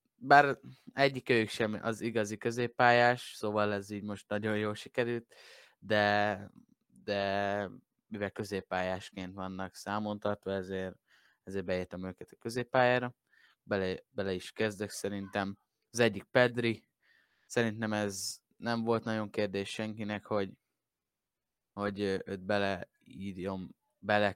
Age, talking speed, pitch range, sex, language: 20-39, 110 wpm, 95-110 Hz, male, Hungarian